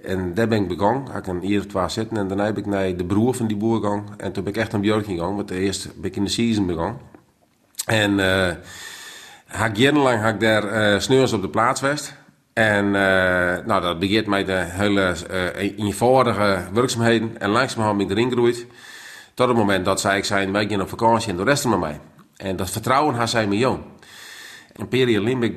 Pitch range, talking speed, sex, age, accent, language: 100-115 Hz, 220 wpm, male, 40-59, Dutch, Dutch